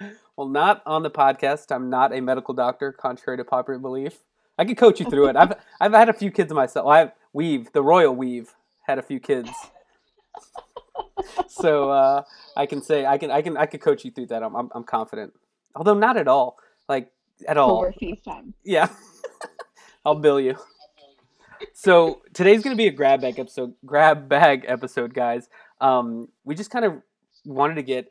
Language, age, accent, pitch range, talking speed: English, 20-39, American, 125-165 Hz, 190 wpm